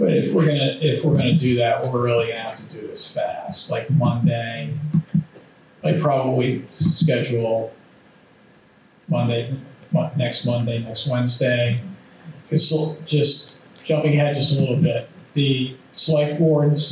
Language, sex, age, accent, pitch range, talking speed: English, male, 40-59, American, 125-145 Hz, 140 wpm